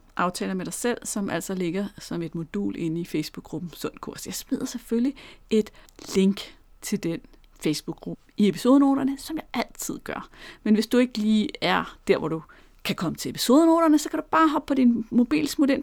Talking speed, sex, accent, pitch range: 190 wpm, female, native, 195-265 Hz